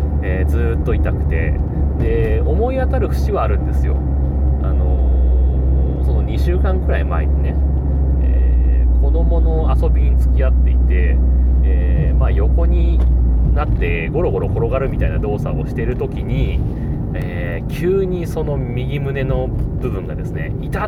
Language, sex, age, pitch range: Japanese, male, 30-49, 65-110 Hz